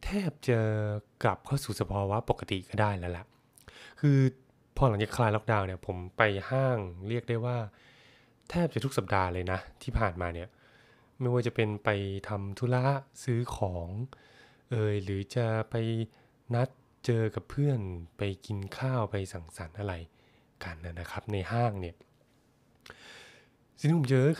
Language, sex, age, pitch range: Thai, male, 20-39, 100-130 Hz